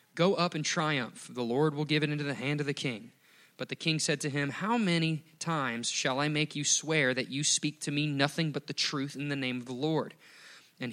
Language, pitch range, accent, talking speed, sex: English, 135-155 Hz, American, 245 wpm, male